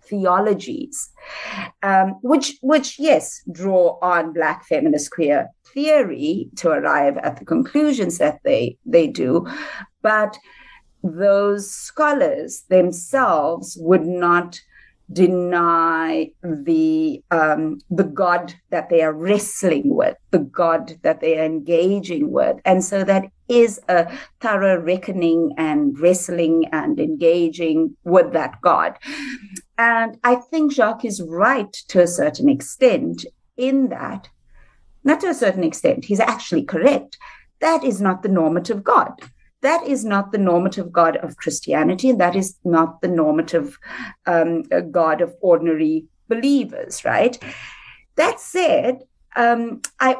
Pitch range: 170-255 Hz